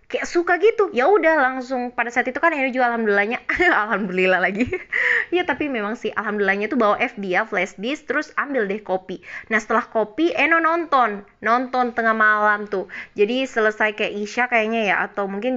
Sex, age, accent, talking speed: female, 20-39, native, 180 wpm